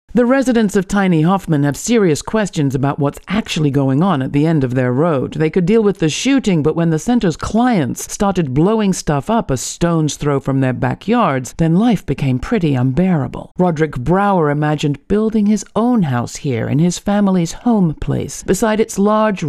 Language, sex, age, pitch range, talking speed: English, female, 60-79, 145-205 Hz, 190 wpm